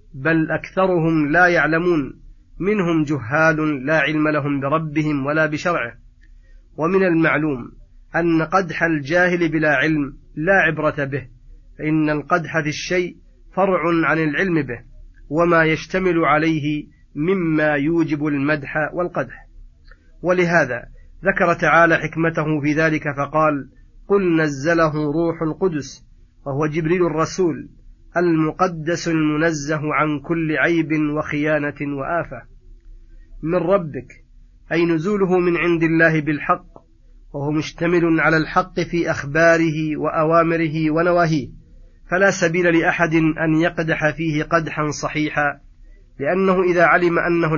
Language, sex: Arabic, male